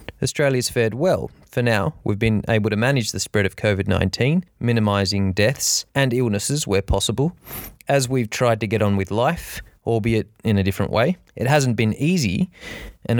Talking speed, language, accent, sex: 175 wpm, English, Australian, male